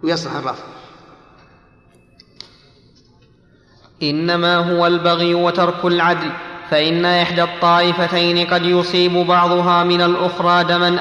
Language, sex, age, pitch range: Arabic, male, 30-49, 165-180 Hz